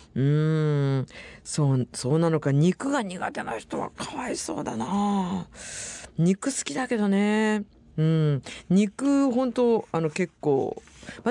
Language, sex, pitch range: Japanese, female, 145-230 Hz